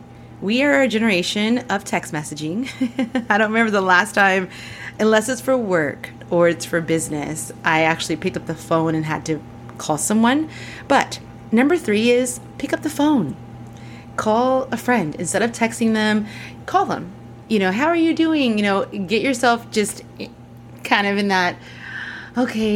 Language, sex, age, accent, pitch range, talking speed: English, female, 30-49, American, 170-245 Hz, 170 wpm